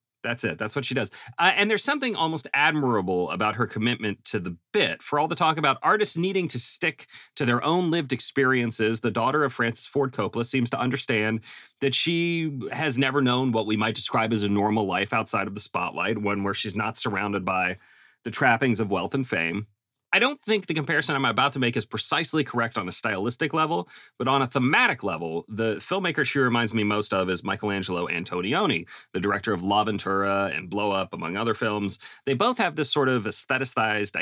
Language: English